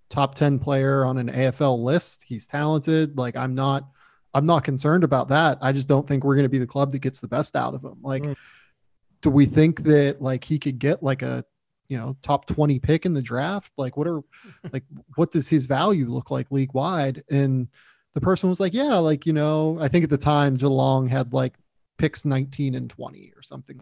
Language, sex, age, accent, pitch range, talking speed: English, male, 20-39, American, 135-155 Hz, 220 wpm